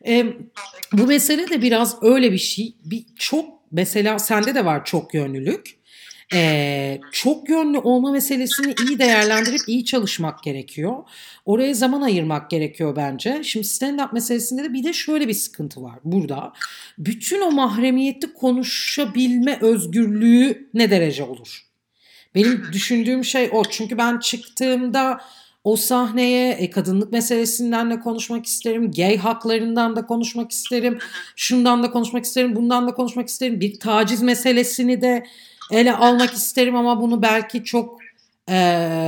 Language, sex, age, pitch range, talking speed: Turkish, female, 50-69, 200-250 Hz, 140 wpm